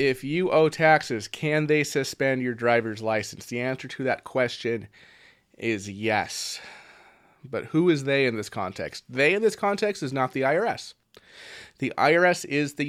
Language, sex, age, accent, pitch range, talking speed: English, male, 30-49, American, 120-160 Hz, 170 wpm